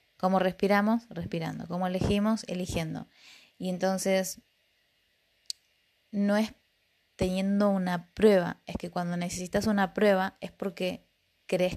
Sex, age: female, 20-39